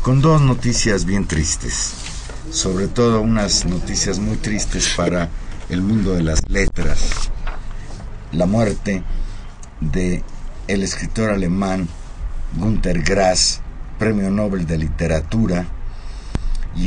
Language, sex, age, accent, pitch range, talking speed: Spanish, male, 50-69, Mexican, 90-110 Hz, 105 wpm